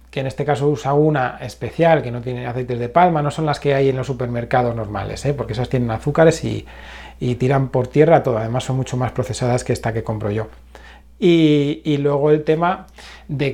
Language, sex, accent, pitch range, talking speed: Spanish, male, Spanish, 125-150 Hz, 215 wpm